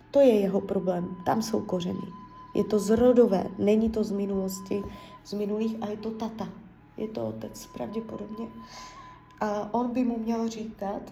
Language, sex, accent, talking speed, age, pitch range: Czech, female, native, 160 wpm, 20-39, 195-225 Hz